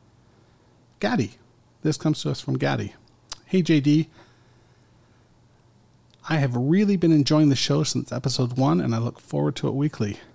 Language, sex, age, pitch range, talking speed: English, male, 40-59, 115-135 Hz, 150 wpm